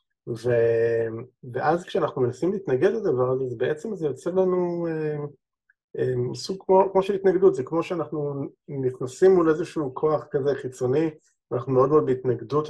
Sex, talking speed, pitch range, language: male, 150 wpm, 125-150 Hz, Hebrew